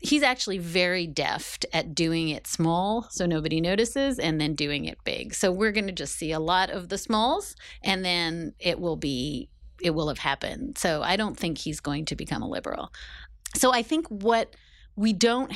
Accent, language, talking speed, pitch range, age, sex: American, English, 195 wpm, 160-205 Hz, 30-49, female